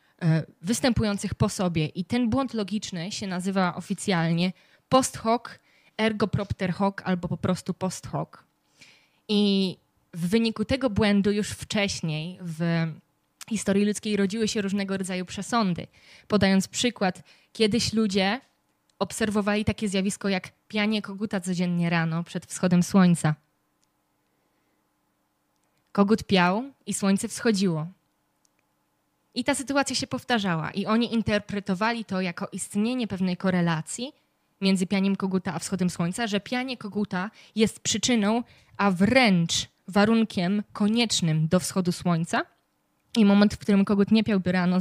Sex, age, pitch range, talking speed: female, 20-39, 180-215 Hz, 125 wpm